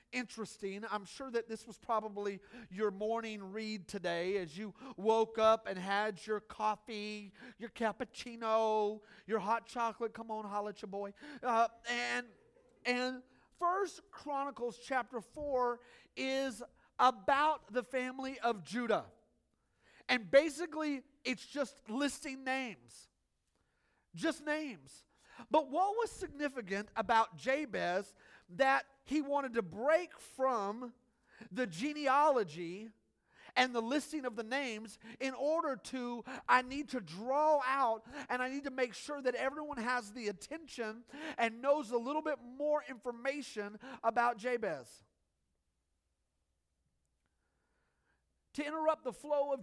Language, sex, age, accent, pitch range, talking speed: English, male, 40-59, American, 210-270 Hz, 125 wpm